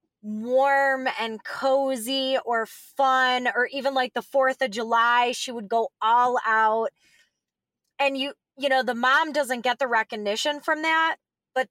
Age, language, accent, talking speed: 20-39, English, American, 155 wpm